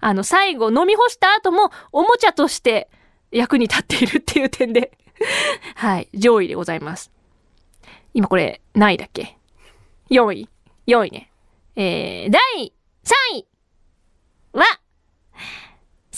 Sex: female